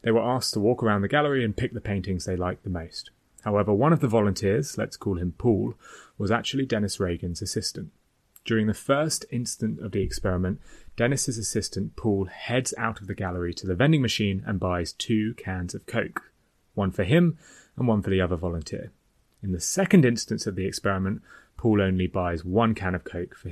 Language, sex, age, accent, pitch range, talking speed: English, male, 30-49, British, 95-120 Hz, 200 wpm